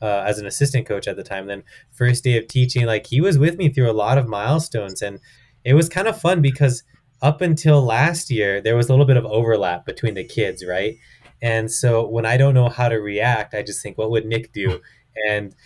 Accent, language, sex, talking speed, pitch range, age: American, English, male, 240 wpm, 115-140 Hz, 20-39